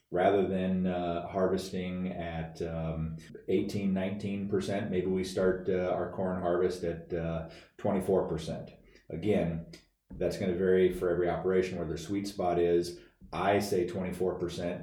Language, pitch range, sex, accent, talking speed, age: English, 85-95 Hz, male, American, 140 wpm, 30-49